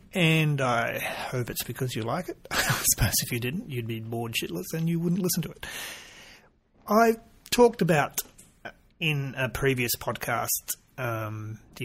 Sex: male